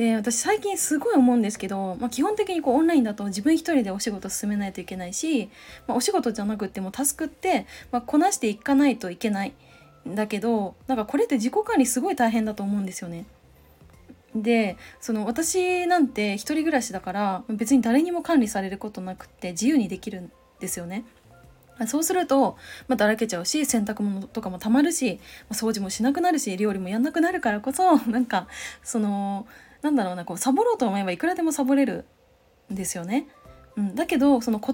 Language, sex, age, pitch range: Japanese, female, 20-39, 200-285 Hz